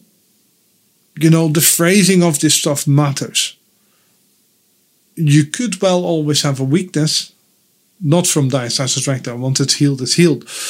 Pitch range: 140-175 Hz